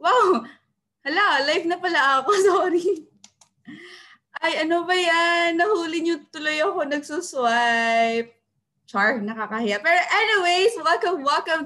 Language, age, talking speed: Filipino, 20-39, 115 wpm